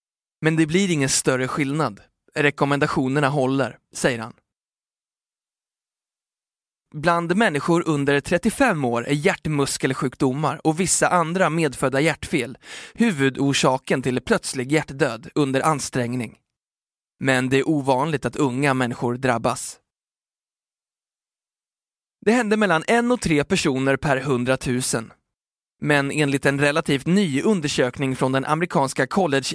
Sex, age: male, 20-39